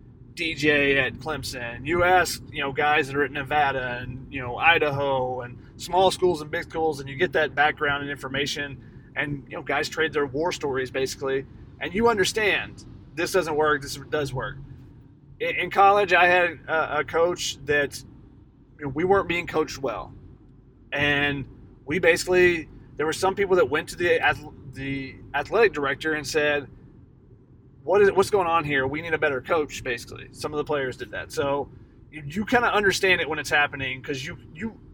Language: English